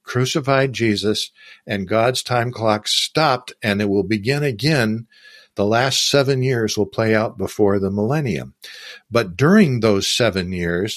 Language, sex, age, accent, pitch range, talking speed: English, male, 60-79, American, 100-120 Hz, 150 wpm